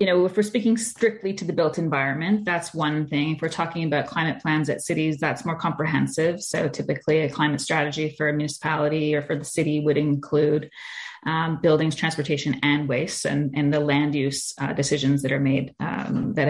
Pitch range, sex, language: 150-165 Hz, female, English